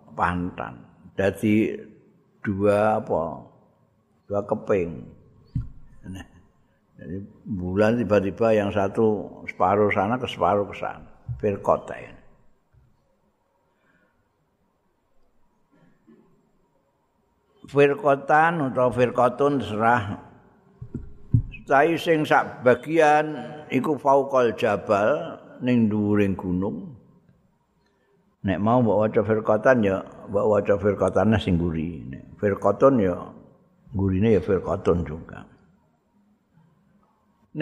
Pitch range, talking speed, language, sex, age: 100-130 Hz, 80 wpm, Indonesian, male, 60-79